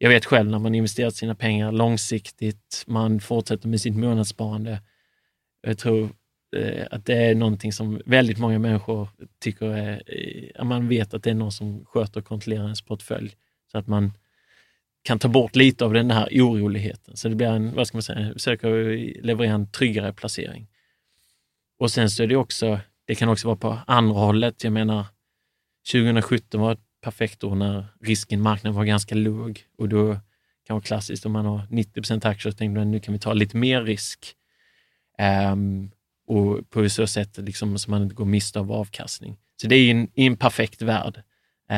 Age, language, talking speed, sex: 30-49, Swedish, 185 wpm, male